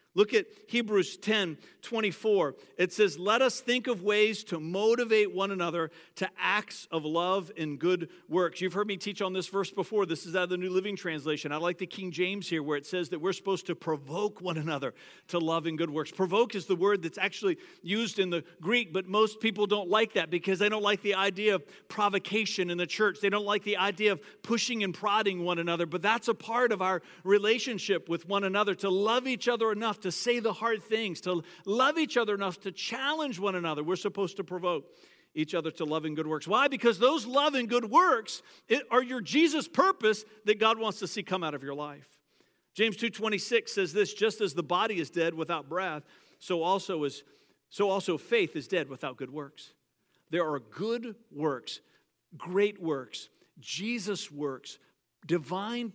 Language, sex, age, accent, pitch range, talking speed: English, male, 50-69, American, 170-215 Hz, 205 wpm